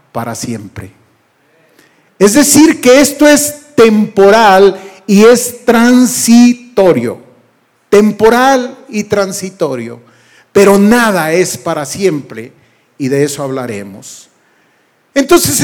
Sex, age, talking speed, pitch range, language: male, 40-59, 90 wpm, 190-270 Hz, Spanish